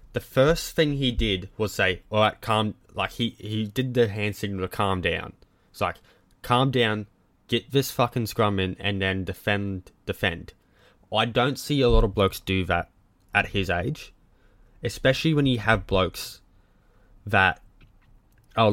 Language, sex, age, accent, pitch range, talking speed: English, male, 20-39, Australian, 95-120 Hz, 165 wpm